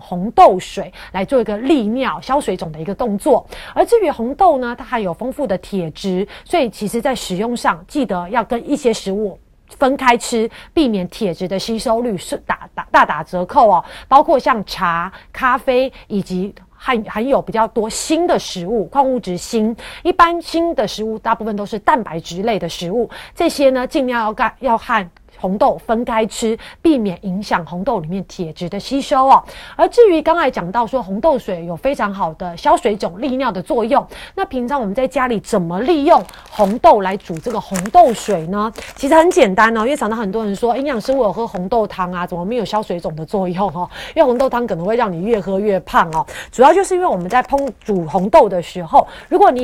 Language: Chinese